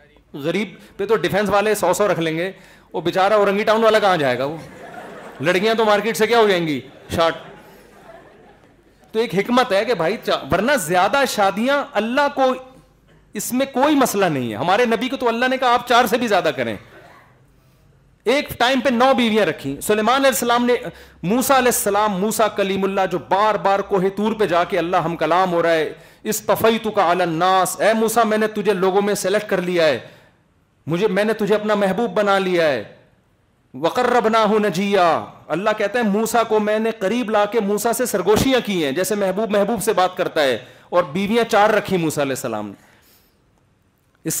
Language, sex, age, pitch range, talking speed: Urdu, male, 40-59, 185-235 Hz, 195 wpm